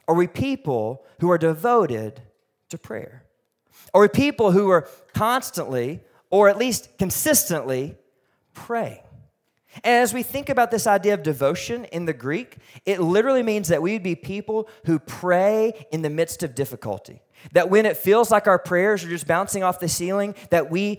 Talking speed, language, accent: 170 wpm, English, American